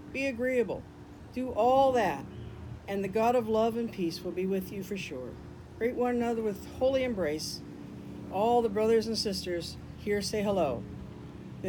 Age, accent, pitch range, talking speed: 50-69, American, 180-245 Hz, 170 wpm